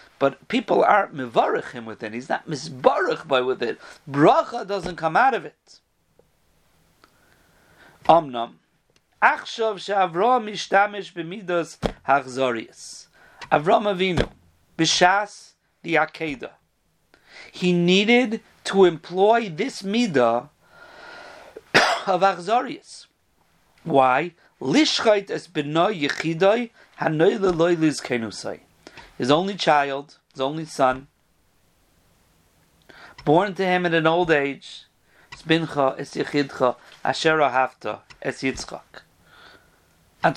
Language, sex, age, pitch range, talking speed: English, male, 40-59, 140-215 Hz, 90 wpm